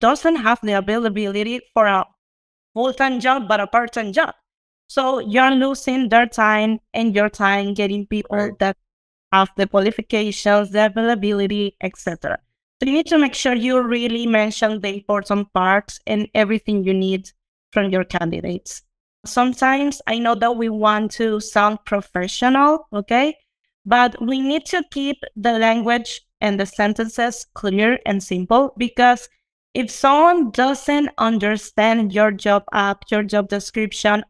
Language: English